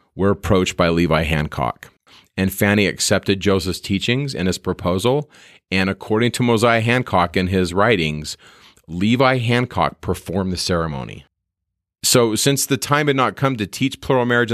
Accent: American